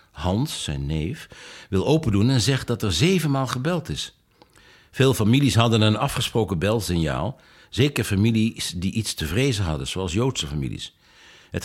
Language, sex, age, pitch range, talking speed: Dutch, male, 60-79, 95-130 Hz, 150 wpm